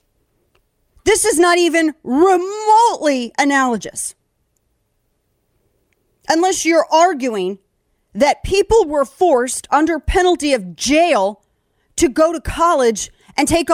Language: English